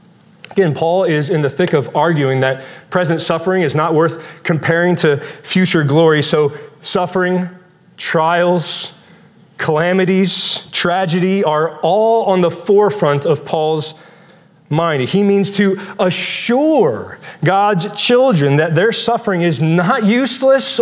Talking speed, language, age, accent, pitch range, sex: 125 wpm, English, 40-59, American, 165-220 Hz, male